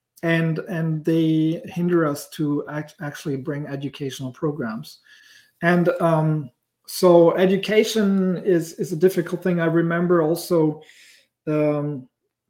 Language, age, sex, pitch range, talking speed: English, 40-59, male, 150-175 Hz, 110 wpm